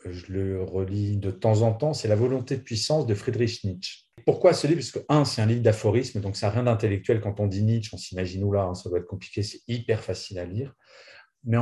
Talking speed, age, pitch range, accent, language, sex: 255 wpm, 30-49, 100-120 Hz, French, French, male